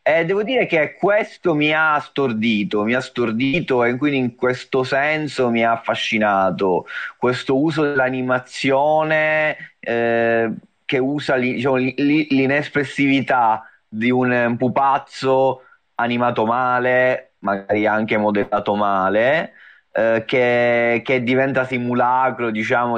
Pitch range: 110-135 Hz